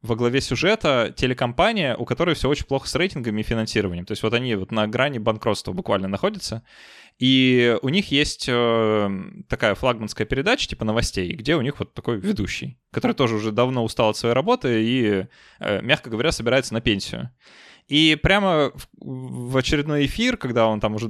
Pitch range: 110-140 Hz